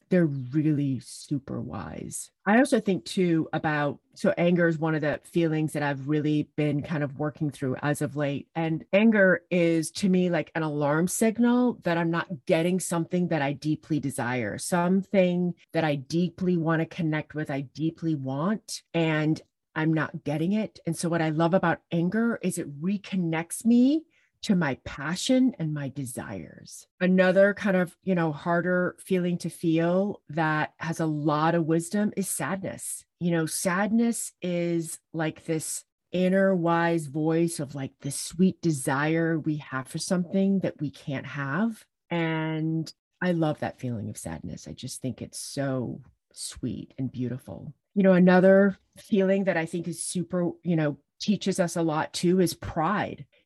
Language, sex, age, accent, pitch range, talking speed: English, female, 30-49, American, 150-180 Hz, 170 wpm